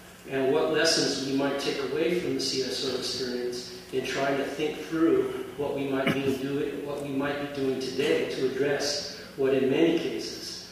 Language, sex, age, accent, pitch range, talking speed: English, male, 40-59, American, 130-165 Hz, 160 wpm